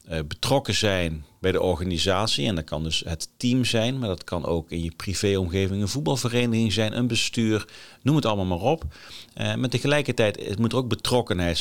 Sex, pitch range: male, 90-115 Hz